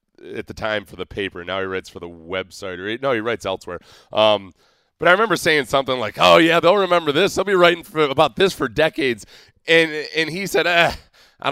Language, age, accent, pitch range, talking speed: English, 30-49, American, 100-135 Hz, 230 wpm